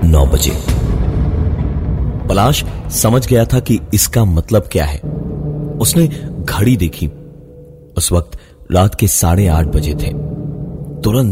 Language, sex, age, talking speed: Hindi, male, 30-49, 125 wpm